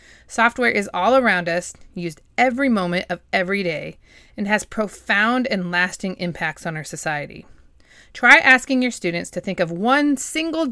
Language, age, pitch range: English, 30-49, 175-245 Hz